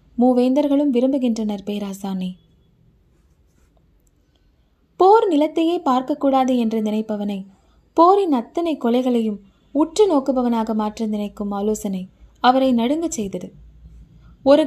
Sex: female